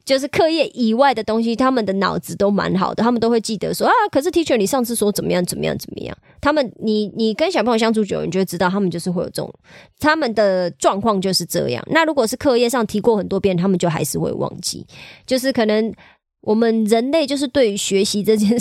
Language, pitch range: Chinese, 185-235 Hz